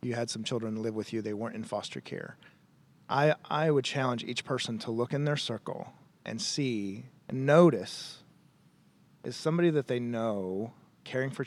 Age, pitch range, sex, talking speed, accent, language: 30-49, 115-145 Hz, male, 180 wpm, American, English